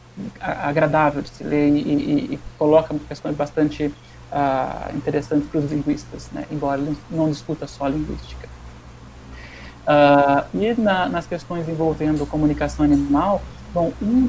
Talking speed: 140 wpm